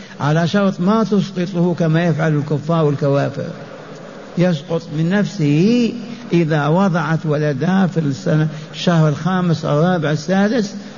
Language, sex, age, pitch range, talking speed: Arabic, male, 50-69, 145-175 Hz, 115 wpm